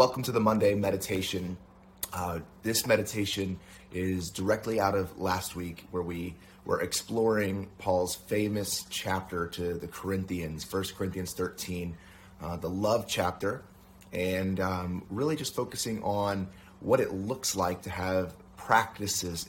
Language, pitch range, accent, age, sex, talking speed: English, 90-105 Hz, American, 30-49, male, 135 wpm